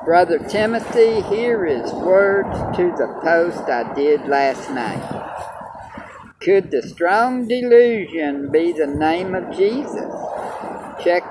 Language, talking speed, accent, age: English, 115 wpm, American, 50-69